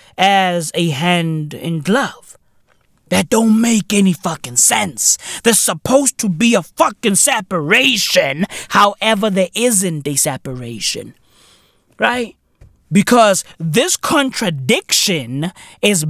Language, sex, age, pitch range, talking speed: English, male, 20-39, 180-270 Hz, 105 wpm